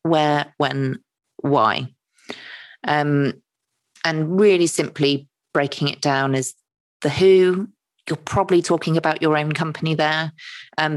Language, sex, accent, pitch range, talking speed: English, female, British, 145-175 Hz, 120 wpm